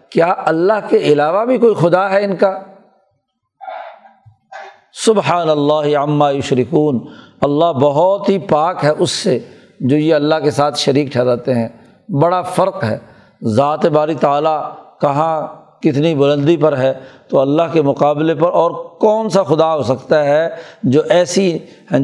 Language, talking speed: Urdu, 150 wpm